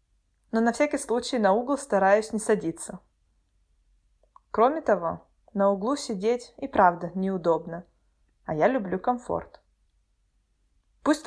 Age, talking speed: 20-39, 115 wpm